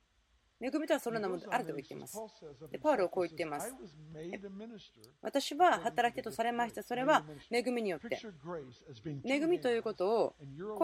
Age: 30-49